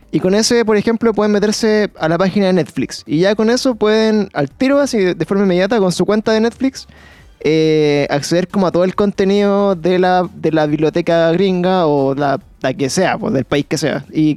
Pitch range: 165-205 Hz